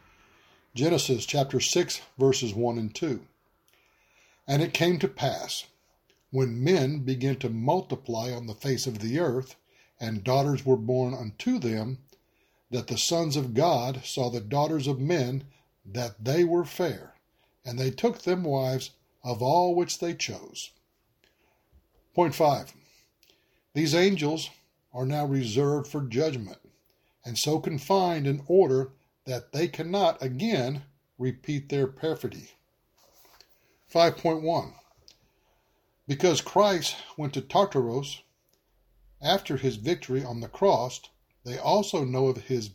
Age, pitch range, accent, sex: 60-79, 125-165 Hz, American, male